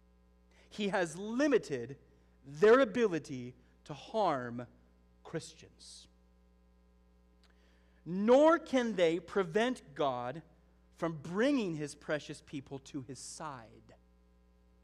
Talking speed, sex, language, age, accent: 85 wpm, male, English, 30-49, American